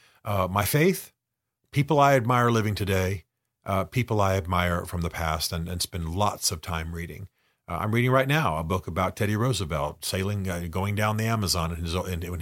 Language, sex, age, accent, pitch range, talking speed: English, male, 40-59, American, 90-115 Hz, 190 wpm